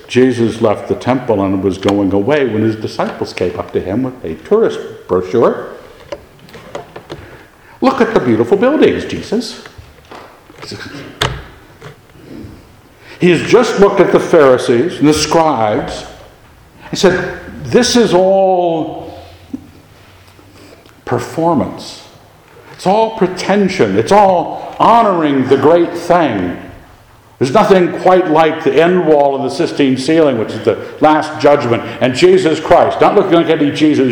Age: 60-79